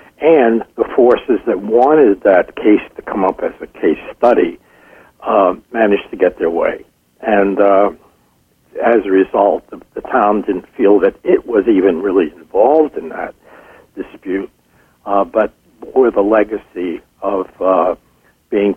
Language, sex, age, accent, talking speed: English, male, 60-79, American, 150 wpm